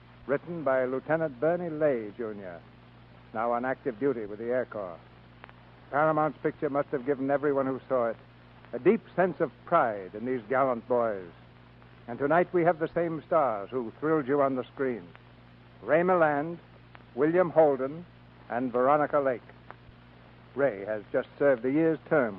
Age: 60-79